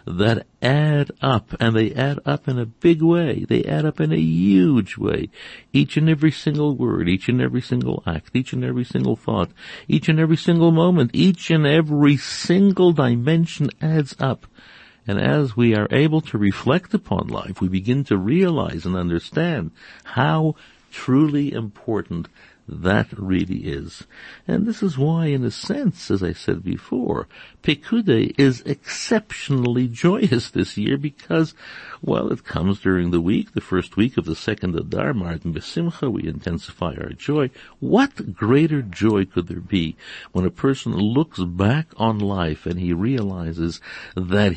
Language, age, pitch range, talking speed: English, 60-79, 95-150 Hz, 160 wpm